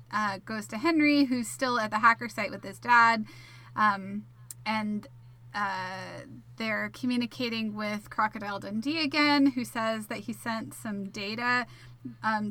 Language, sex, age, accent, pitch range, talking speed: English, female, 20-39, American, 185-230 Hz, 145 wpm